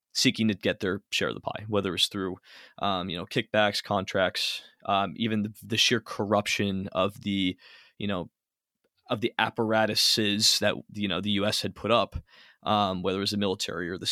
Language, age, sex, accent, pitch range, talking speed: English, 20-39, male, American, 100-110 Hz, 190 wpm